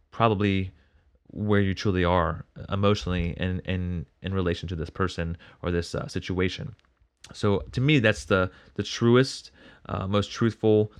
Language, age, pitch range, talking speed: English, 30-49, 90-105 Hz, 145 wpm